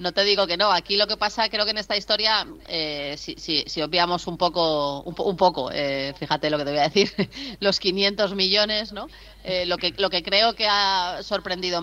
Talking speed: 230 wpm